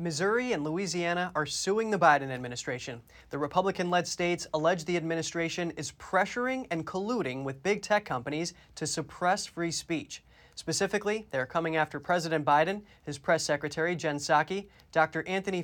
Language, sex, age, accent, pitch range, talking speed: English, male, 20-39, American, 155-190 Hz, 155 wpm